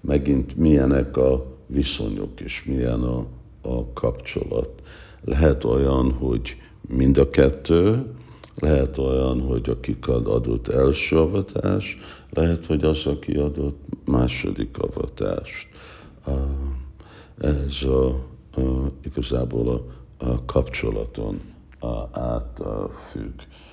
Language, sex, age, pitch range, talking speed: Hungarian, male, 60-79, 65-75 Hz, 95 wpm